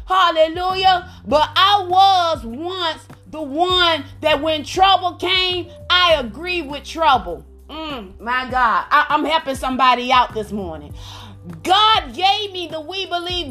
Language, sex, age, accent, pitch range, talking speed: English, female, 30-49, American, 300-385 Hz, 140 wpm